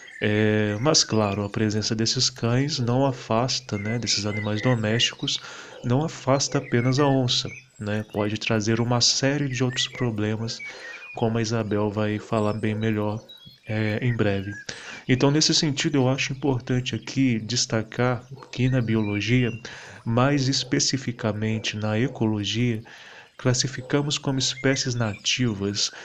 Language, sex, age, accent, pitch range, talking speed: Portuguese, male, 20-39, Brazilian, 110-135 Hz, 120 wpm